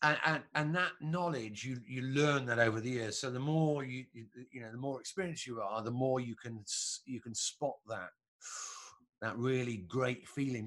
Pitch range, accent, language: 115-155 Hz, British, English